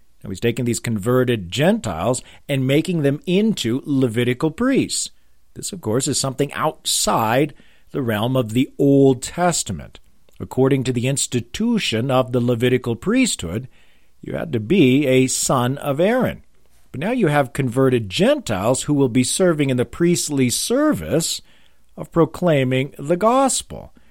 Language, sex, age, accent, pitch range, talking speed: English, male, 50-69, American, 115-145 Hz, 140 wpm